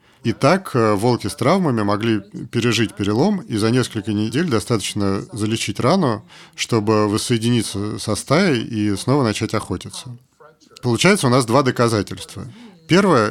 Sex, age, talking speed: male, 40-59, 130 wpm